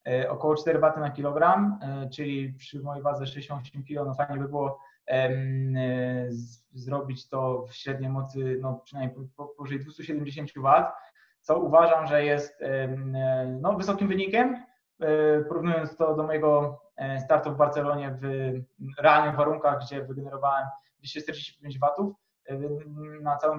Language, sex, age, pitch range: Polish, male, 20-39, 135-155 Hz